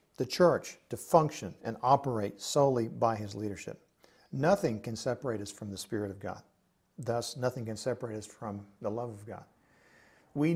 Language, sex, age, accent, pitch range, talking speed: English, male, 50-69, American, 125-165 Hz, 170 wpm